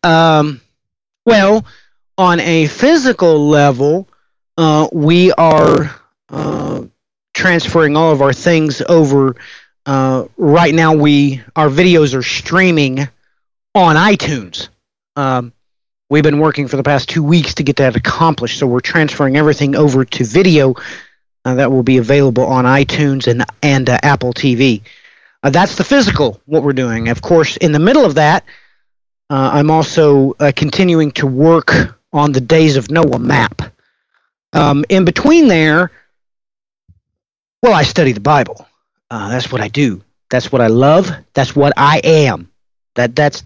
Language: English